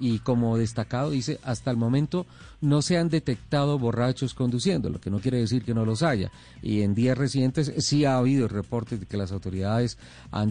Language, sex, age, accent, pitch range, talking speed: Spanish, male, 40-59, Colombian, 115-150 Hz, 200 wpm